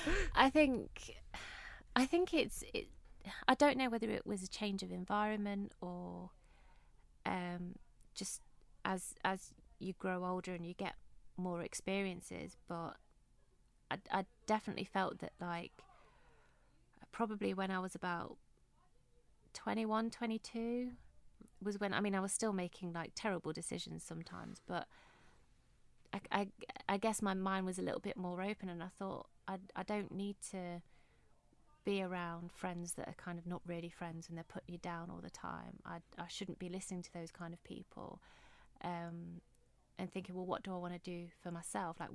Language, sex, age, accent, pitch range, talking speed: English, female, 30-49, British, 170-195 Hz, 165 wpm